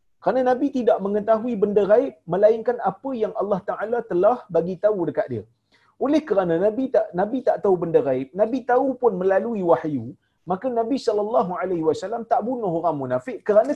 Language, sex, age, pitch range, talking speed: Malayalam, male, 40-59, 170-275 Hz, 170 wpm